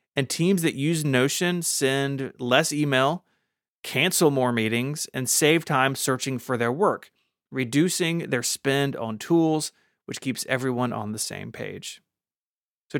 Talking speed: 145 wpm